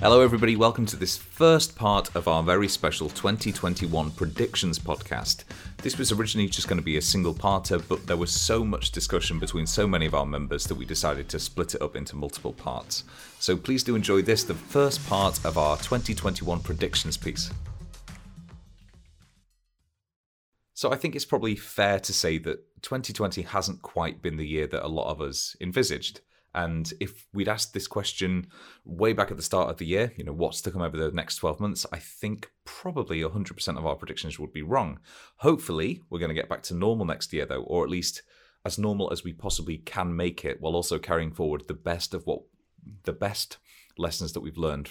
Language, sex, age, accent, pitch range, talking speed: English, male, 30-49, British, 80-100 Hz, 200 wpm